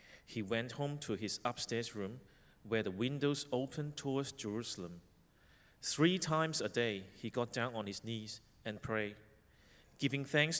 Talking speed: 155 wpm